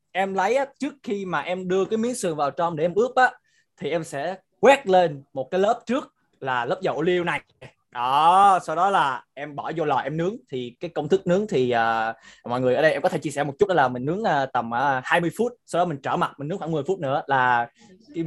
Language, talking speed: Vietnamese, 265 wpm